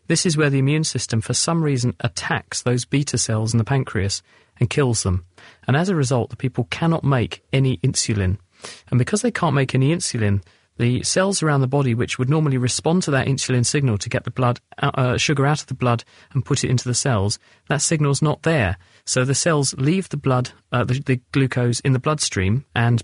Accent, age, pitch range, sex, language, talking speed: British, 40-59, 115-140 Hz, male, English, 220 wpm